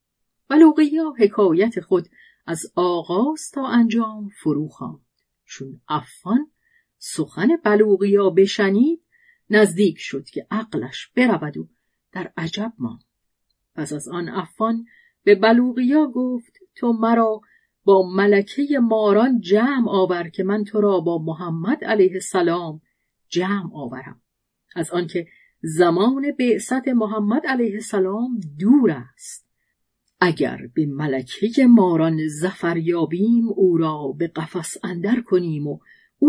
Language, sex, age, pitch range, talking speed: Persian, female, 40-59, 170-230 Hz, 110 wpm